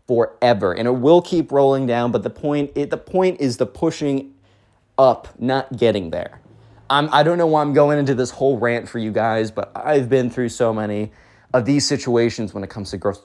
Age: 20-39